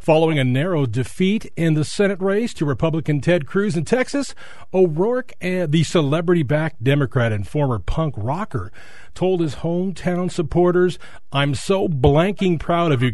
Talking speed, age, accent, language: 145 wpm, 40-59, American, English